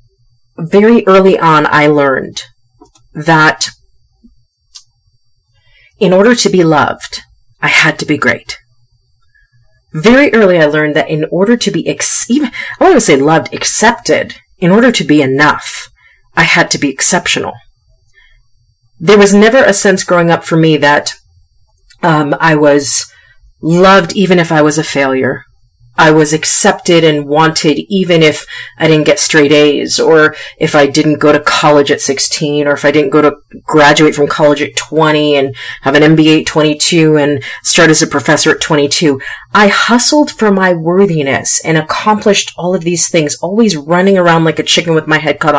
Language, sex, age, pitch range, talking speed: English, female, 40-59, 140-175 Hz, 170 wpm